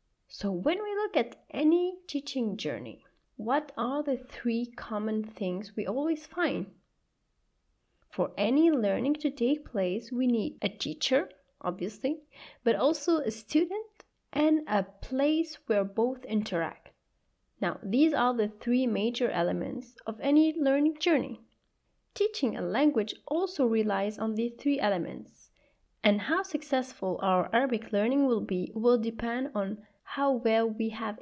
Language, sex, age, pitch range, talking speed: Arabic, female, 30-49, 205-290 Hz, 140 wpm